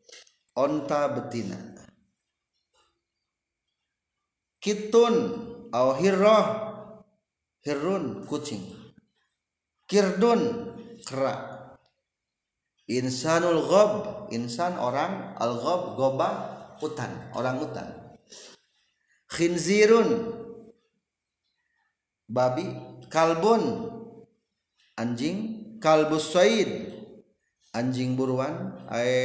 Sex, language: male, Indonesian